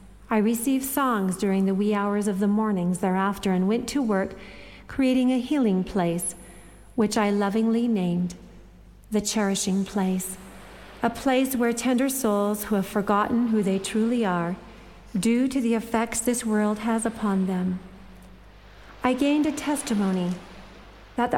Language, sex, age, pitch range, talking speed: English, female, 40-59, 195-245 Hz, 145 wpm